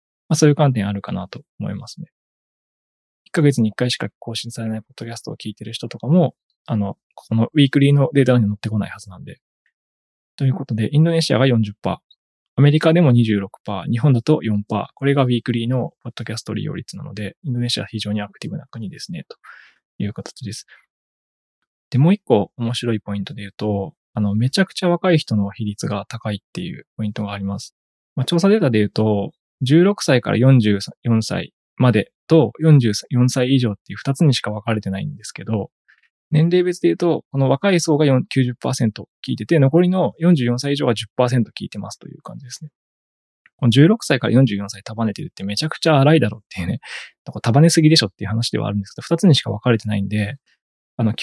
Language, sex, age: Japanese, male, 20-39